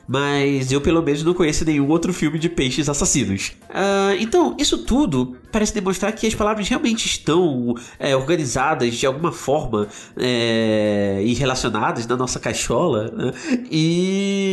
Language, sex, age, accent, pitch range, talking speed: Portuguese, male, 30-49, Brazilian, 115-190 Hz, 150 wpm